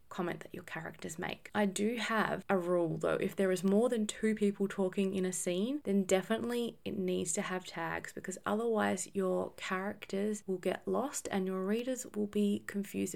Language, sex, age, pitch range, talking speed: English, female, 20-39, 180-210 Hz, 190 wpm